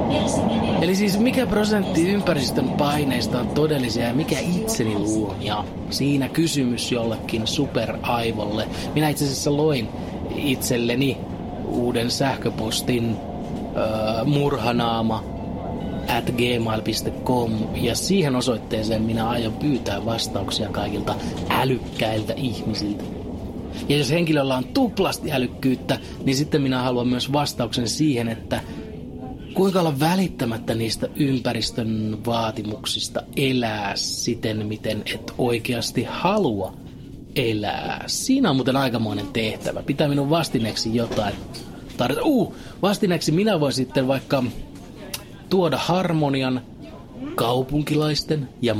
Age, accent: 30-49, native